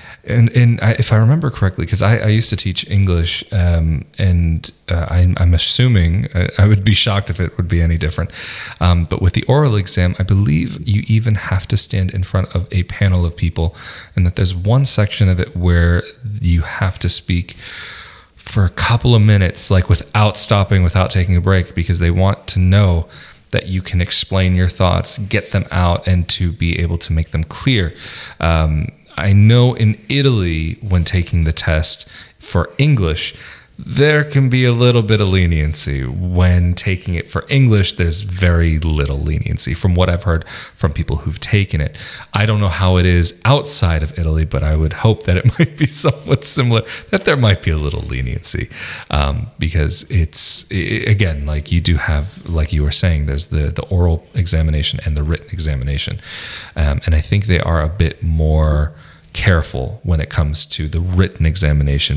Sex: male